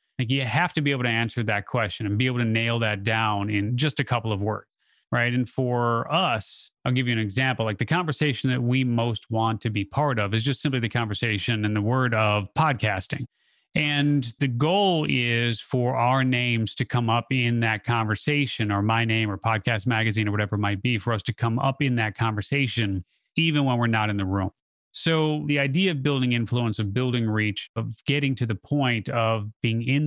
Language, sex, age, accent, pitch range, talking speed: English, male, 30-49, American, 110-135 Hz, 220 wpm